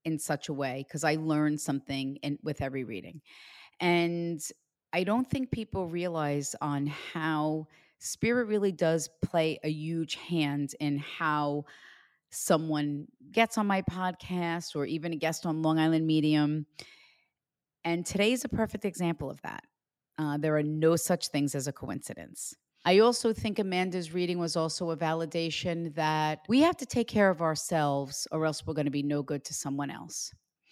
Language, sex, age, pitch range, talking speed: English, female, 30-49, 150-175 Hz, 170 wpm